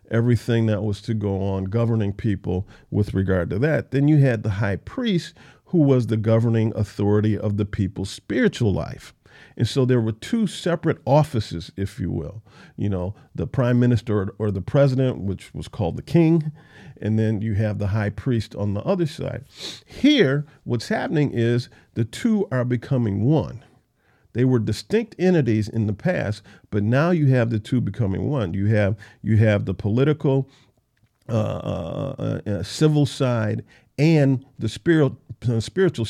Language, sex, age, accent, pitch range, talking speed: English, male, 50-69, American, 105-130 Hz, 170 wpm